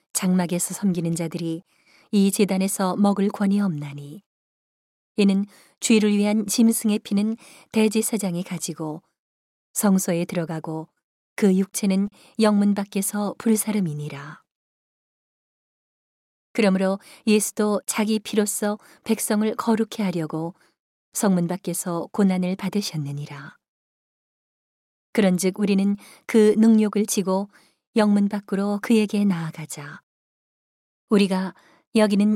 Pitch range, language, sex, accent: 180-215 Hz, Korean, female, native